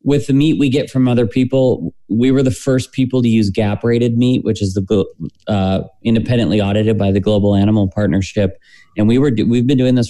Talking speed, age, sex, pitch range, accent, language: 220 wpm, 20-39, male, 95-115 Hz, American, English